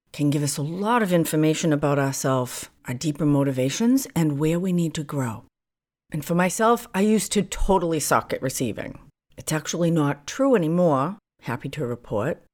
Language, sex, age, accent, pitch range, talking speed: English, female, 50-69, American, 145-205 Hz, 170 wpm